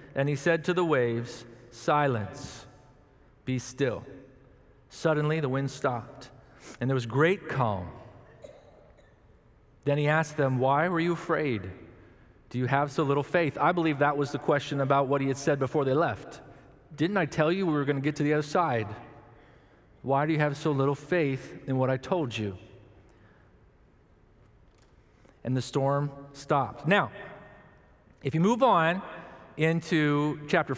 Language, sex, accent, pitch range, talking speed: English, male, American, 135-165 Hz, 160 wpm